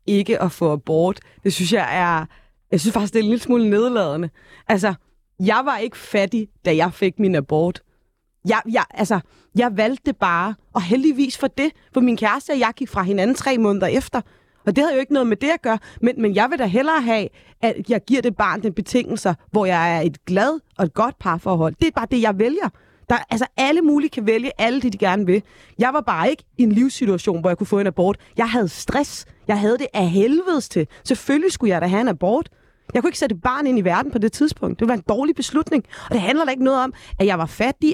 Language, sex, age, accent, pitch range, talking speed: Danish, female, 30-49, native, 195-260 Hz, 245 wpm